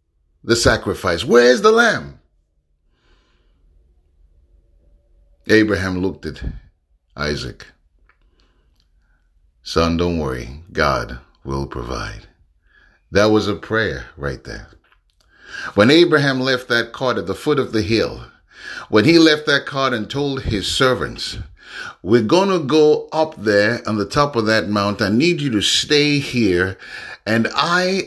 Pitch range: 80-130 Hz